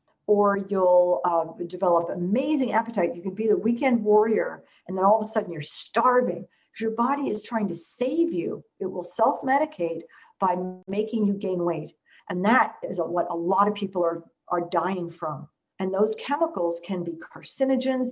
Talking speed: 180 wpm